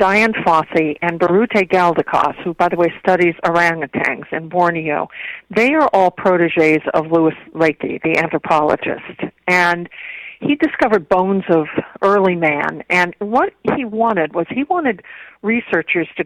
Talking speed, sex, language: 140 wpm, female, English